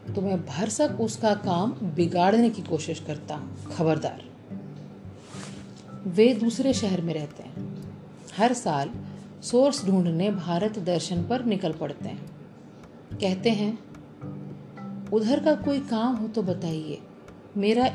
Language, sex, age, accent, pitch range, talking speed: Hindi, female, 40-59, native, 170-225 Hz, 120 wpm